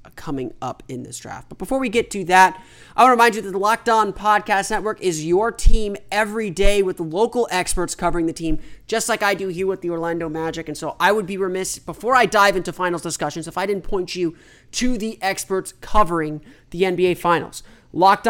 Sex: male